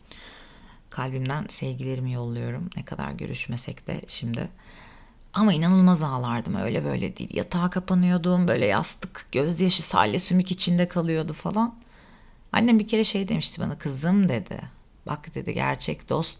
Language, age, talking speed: Turkish, 40-59, 130 wpm